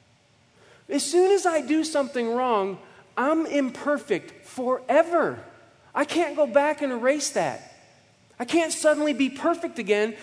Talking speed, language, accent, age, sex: 135 wpm, English, American, 40-59, male